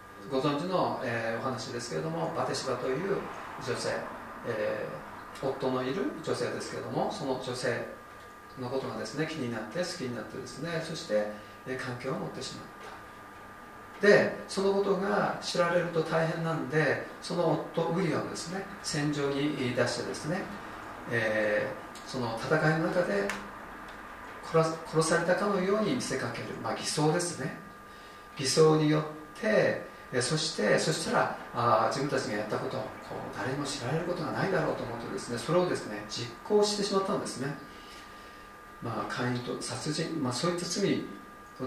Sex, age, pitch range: male, 40-59, 130-170 Hz